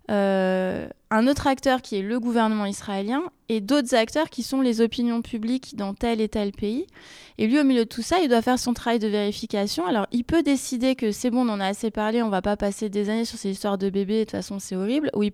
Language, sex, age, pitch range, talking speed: French, female, 20-39, 210-255 Hz, 260 wpm